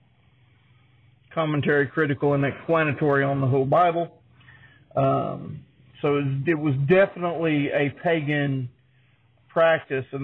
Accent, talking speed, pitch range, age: American, 100 wpm, 130-170 Hz, 50-69